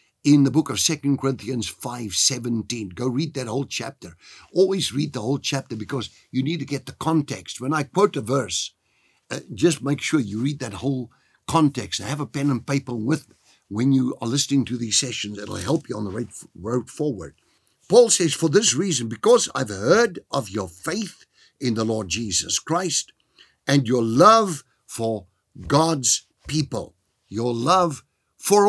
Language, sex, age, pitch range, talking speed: English, male, 60-79, 115-155 Hz, 185 wpm